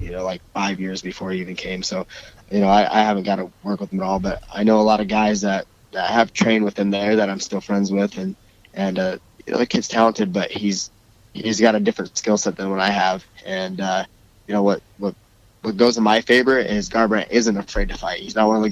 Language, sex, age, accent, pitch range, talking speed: English, male, 20-39, American, 100-115 Hz, 265 wpm